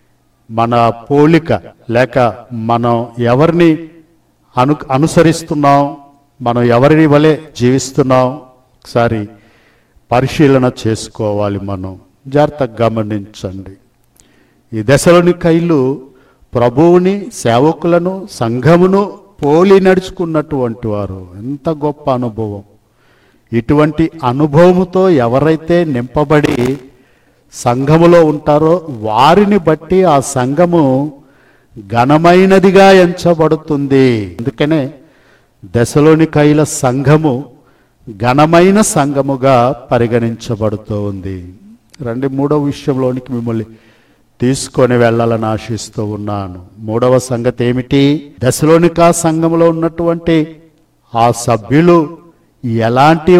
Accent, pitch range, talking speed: native, 120-160 Hz, 70 wpm